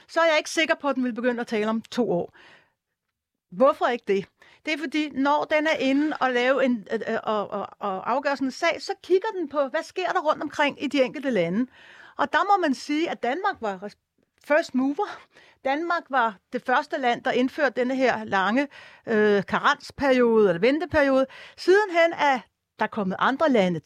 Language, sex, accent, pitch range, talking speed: Danish, female, native, 240-315 Hz, 195 wpm